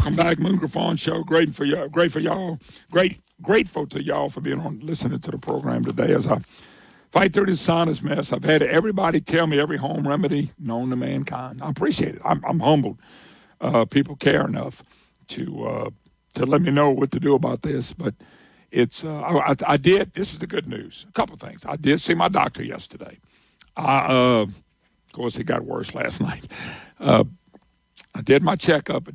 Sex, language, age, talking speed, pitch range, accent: male, English, 50-69, 200 wpm, 125-160 Hz, American